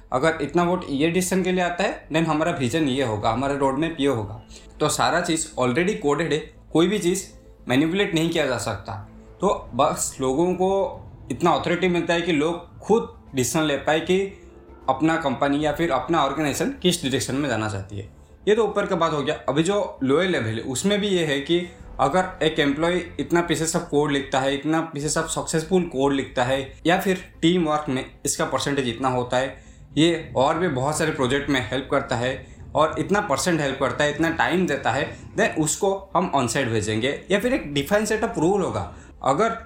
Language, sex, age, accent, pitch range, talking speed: Hindi, male, 20-39, native, 135-175 Hz, 205 wpm